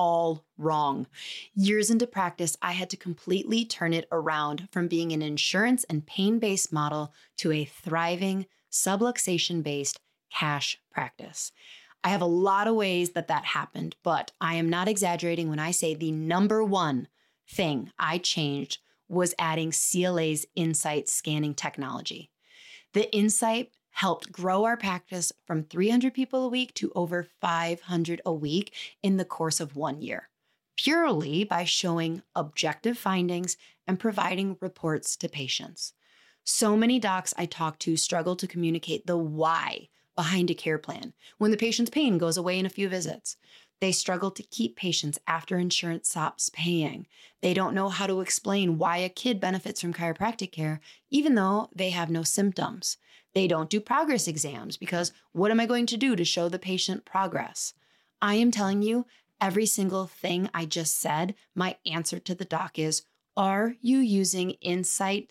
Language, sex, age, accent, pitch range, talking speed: English, female, 30-49, American, 165-195 Hz, 160 wpm